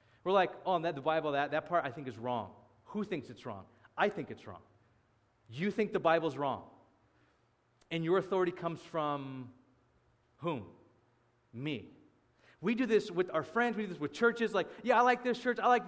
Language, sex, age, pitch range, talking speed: English, male, 30-49, 130-200 Hz, 195 wpm